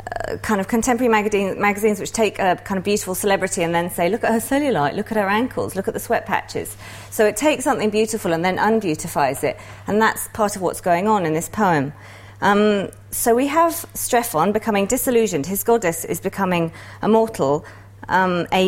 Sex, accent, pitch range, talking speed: female, British, 160-230 Hz, 195 wpm